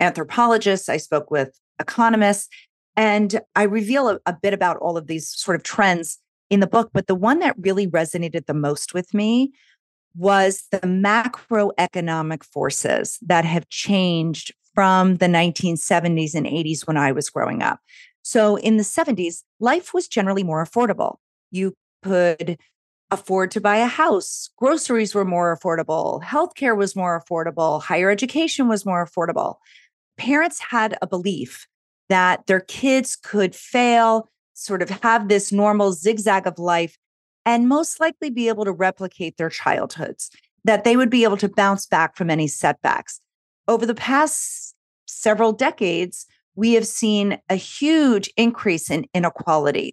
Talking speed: 155 wpm